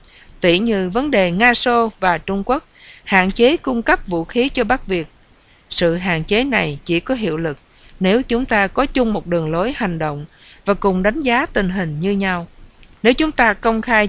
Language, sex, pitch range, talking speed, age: English, female, 170-235 Hz, 205 wpm, 50-69